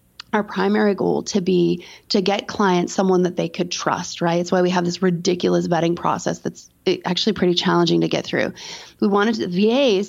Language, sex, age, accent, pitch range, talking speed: English, female, 30-49, American, 180-225 Hz, 190 wpm